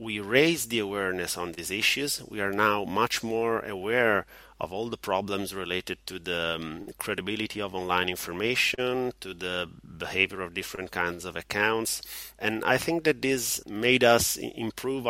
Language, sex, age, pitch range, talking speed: English, male, 30-49, 95-115 Hz, 160 wpm